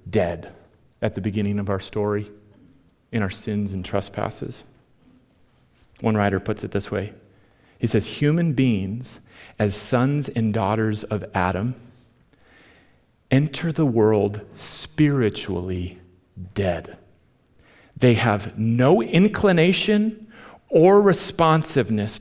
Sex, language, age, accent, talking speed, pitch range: male, English, 40-59, American, 105 wpm, 100-140 Hz